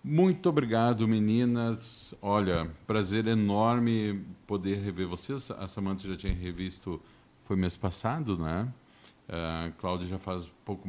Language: Portuguese